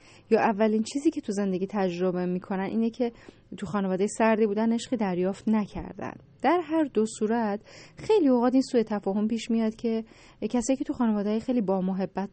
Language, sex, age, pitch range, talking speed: Persian, female, 10-29, 185-230 Hz, 175 wpm